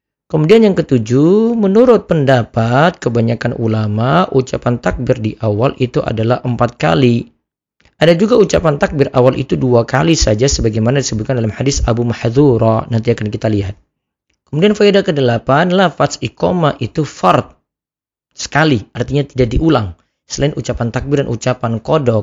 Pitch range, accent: 120-150 Hz, native